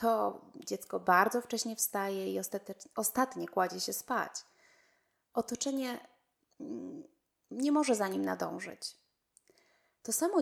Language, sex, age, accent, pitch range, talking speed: Polish, female, 20-39, native, 195-235 Hz, 105 wpm